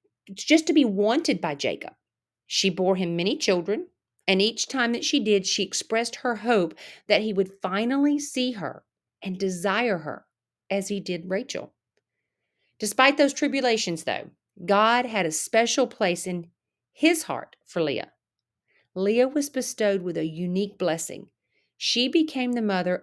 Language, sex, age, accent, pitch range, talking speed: English, female, 40-59, American, 185-240 Hz, 155 wpm